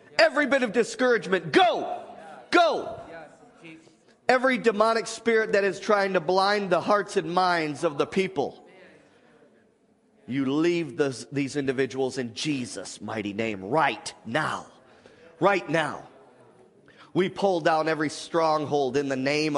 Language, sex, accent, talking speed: English, male, American, 125 wpm